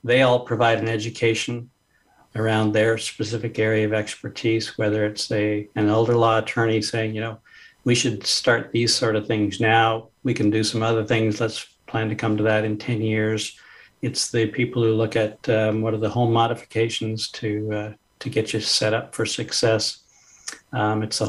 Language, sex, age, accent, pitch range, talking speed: English, male, 60-79, American, 105-115 Hz, 190 wpm